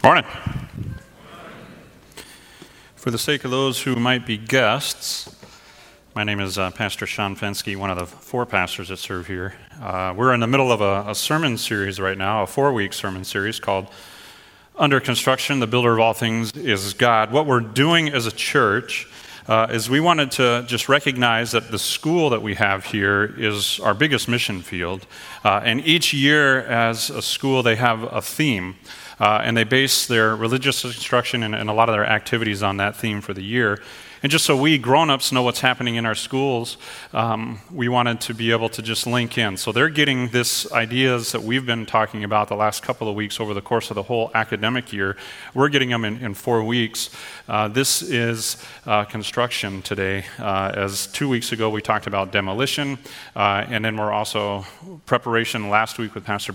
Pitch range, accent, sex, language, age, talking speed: 105-125 Hz, American, male, English, 40-59, 195 wpm